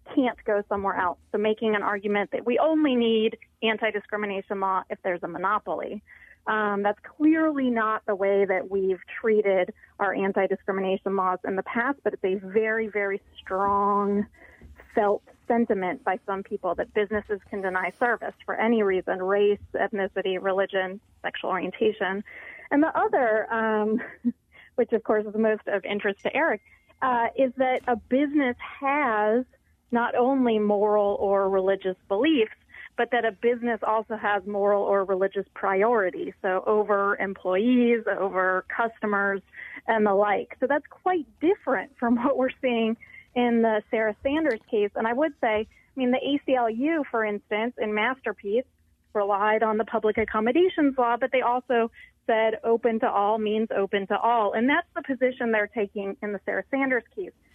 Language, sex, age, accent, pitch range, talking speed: English, female, 30-49, American, 200-245 Hz, 160 wpm